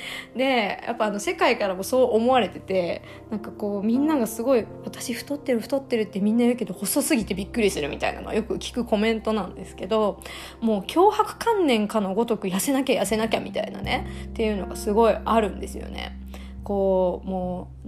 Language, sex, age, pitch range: Japanese, female, 20-39, 190-260 Hz